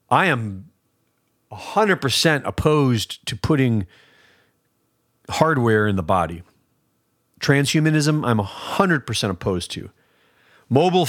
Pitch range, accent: 95-140 Hz, American